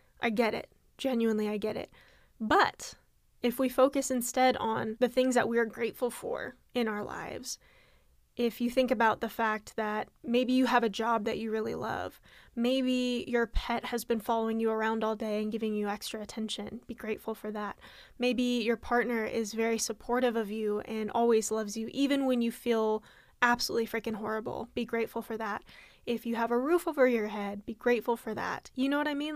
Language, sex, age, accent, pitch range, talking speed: English, female, 10-29, American, 225-250 Hz, 200 wpm